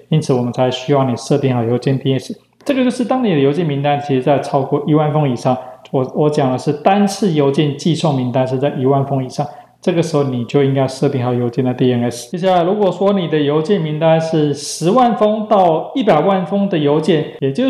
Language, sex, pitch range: Chinese, male, 140-180 Hz